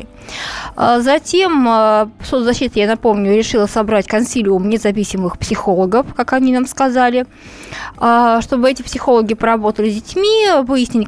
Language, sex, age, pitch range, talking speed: Russian, female, 20-39, 215-275 Hz, 110 wpm